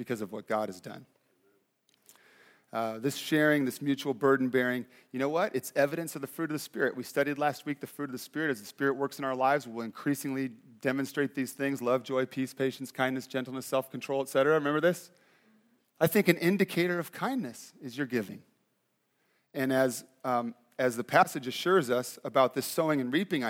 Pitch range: 130-165 Hz